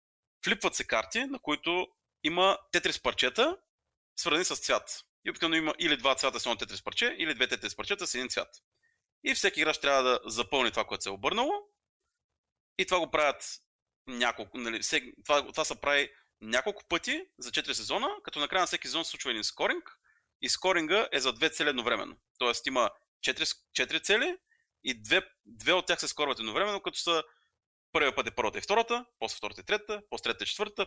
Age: 30-49